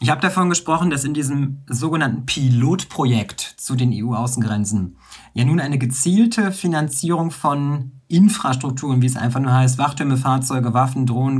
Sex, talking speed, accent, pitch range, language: male, 145 wpm, German, 125-155 Hz, German